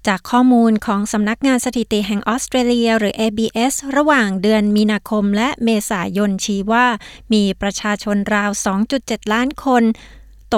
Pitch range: 205-245 Hz